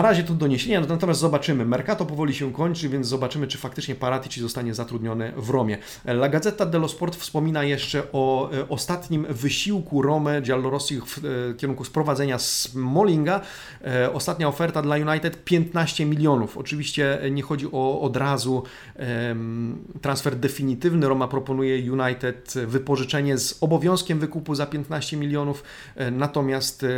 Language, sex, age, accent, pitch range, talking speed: Polish, male, 30-49, native, 125-150 Hz, 135 wpm